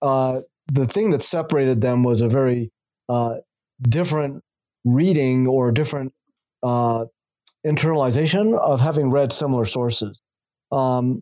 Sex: male